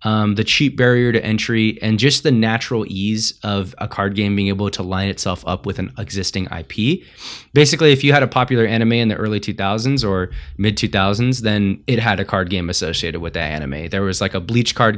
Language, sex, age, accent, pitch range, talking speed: English, male, 20-39, American, 95-125 Hz, 215 wpm